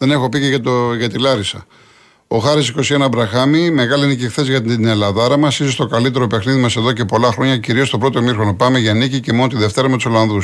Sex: male